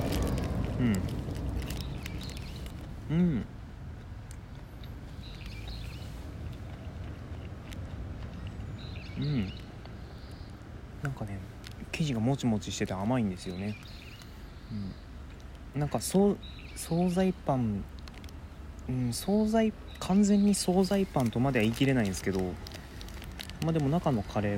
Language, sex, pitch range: Japanese, male, 95-120 Hz